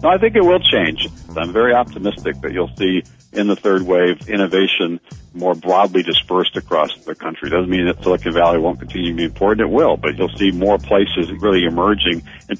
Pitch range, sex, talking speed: 90-105 Hz, male, 205 wpm